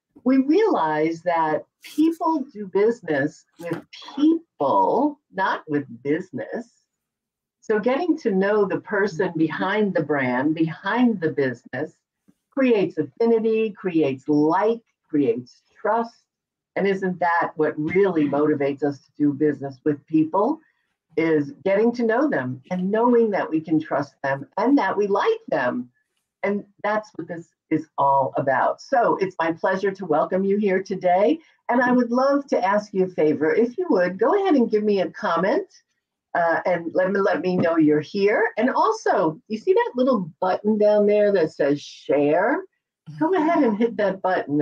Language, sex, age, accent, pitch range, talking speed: English, female, 50-69, American, 155-230 Hz, 160 wpm